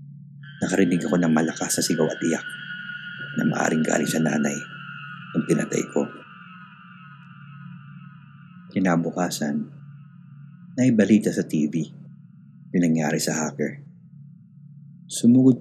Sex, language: male, Filipino